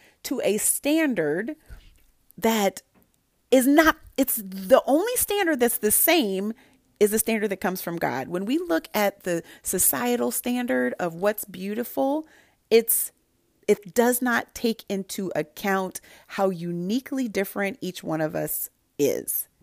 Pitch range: 190-275 Hz